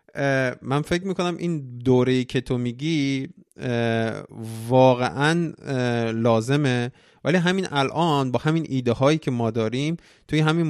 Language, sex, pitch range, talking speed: Persian, male, 110-140 Hz, 125 wpm